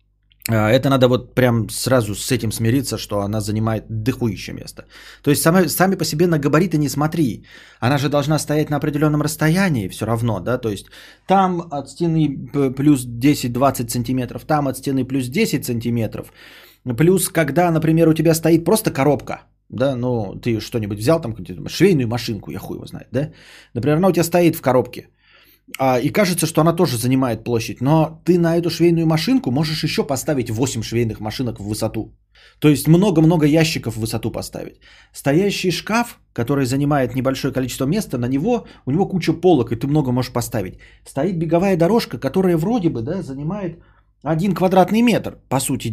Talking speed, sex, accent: 175 wpm, male, native